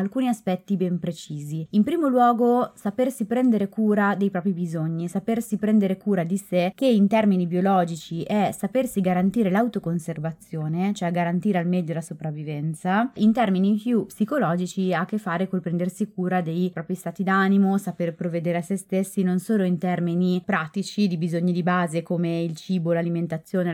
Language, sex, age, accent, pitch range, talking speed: Italian, female, 20-39, native, 170-210 Hz, 165 wpm